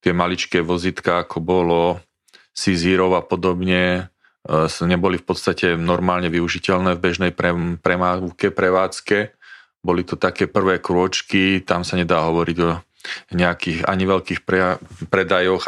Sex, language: male, Slovak